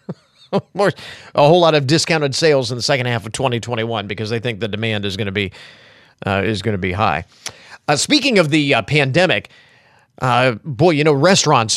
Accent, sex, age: American, male, 40-59